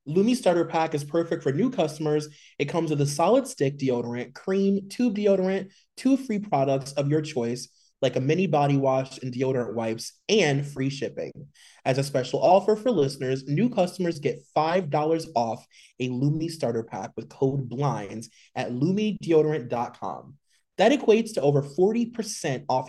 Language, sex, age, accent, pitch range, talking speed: English, male, 20-39, American, 130-185 Hz, 160 wpm